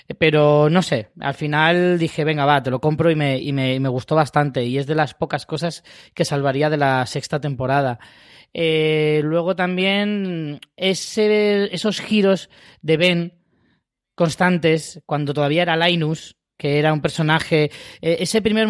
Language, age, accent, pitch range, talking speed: Spanish, 20-39, Spanish, 145-175 Hz, 150 wpm